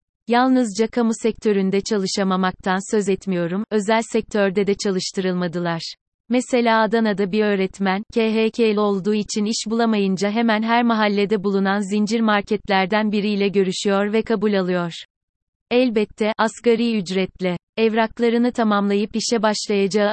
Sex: female